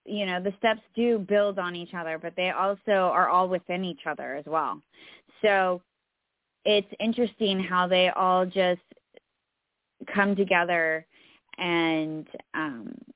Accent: American